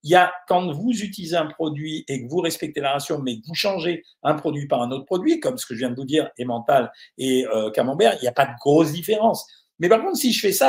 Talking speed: 280 wpm